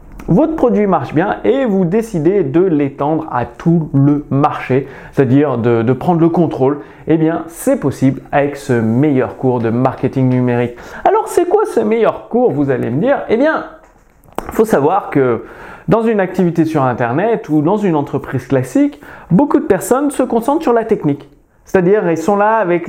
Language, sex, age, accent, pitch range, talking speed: French, male, 30-49, French, 145-225 Hz, 180 wpm